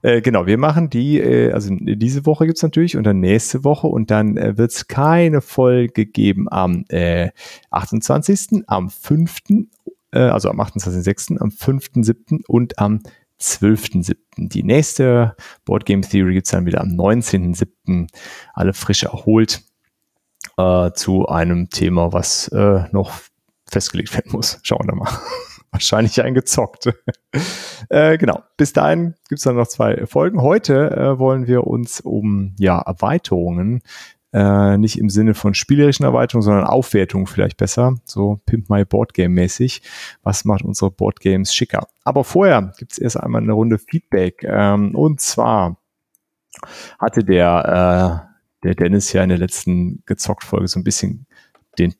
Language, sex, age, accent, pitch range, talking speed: German, male, 30-49, German, 95-125 Hz, 155 wpm